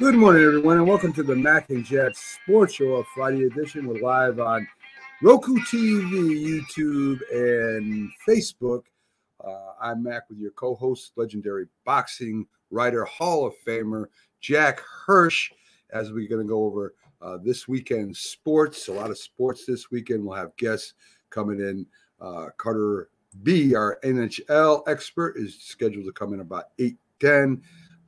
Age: 50-69